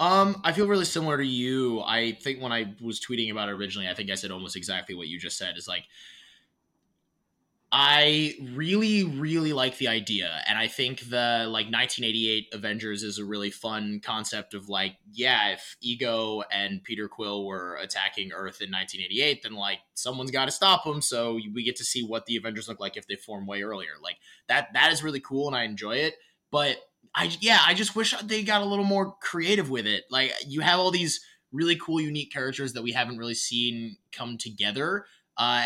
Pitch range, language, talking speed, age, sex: 105-150 Hz, English, 205 wpm, 20-39, male